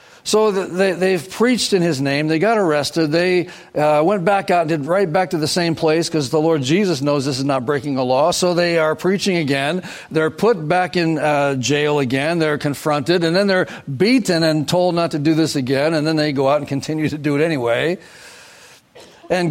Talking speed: 210 wpm